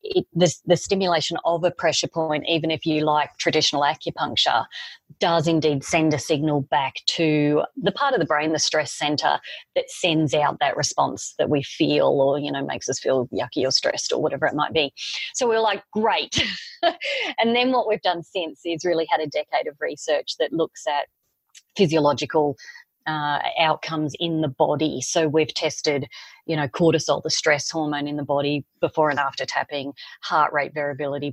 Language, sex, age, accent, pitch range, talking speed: English, female, 30-49, Australian, 150-175 Hz, 180 wpm